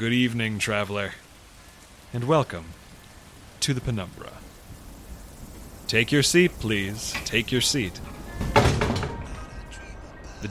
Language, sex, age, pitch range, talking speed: English, male, 30-49, 95-120 Hz, 90 wpm